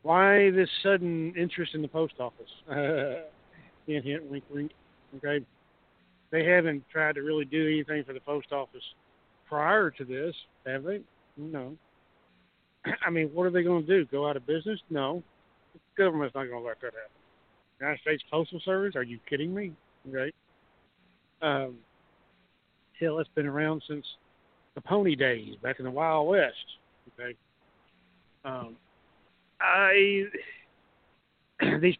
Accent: American